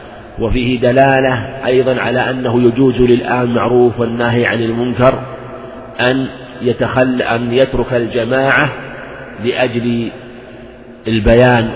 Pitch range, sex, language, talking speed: 115-125 Hz, male, Arabic, 90 wpm